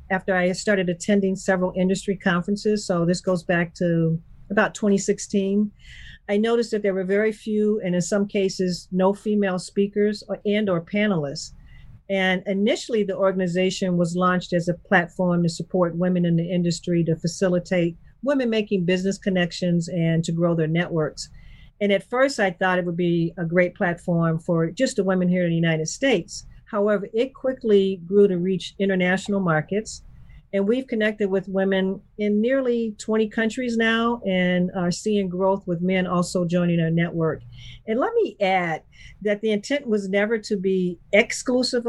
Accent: American